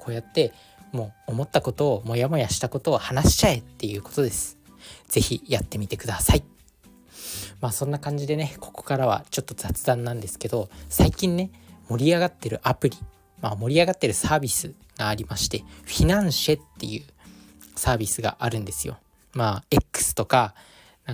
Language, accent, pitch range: Japanese, native, 100-140 Hz